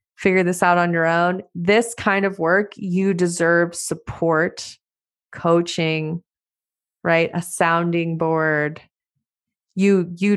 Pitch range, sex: 175-205 Hz, female